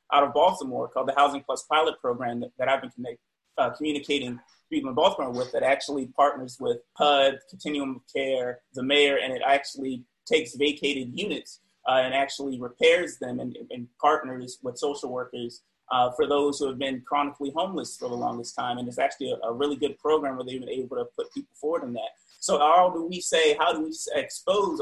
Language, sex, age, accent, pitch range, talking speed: English, male, 30-49, American, 130-165 Hz, 205 wpm